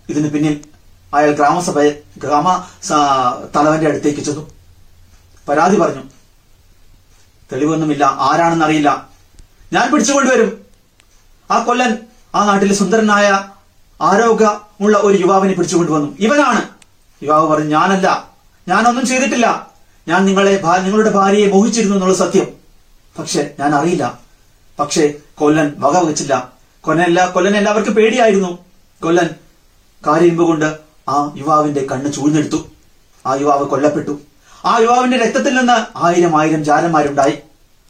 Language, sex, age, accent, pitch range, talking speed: Malayalam, male, 30-49, native, 145-195 Hz, 95 wpm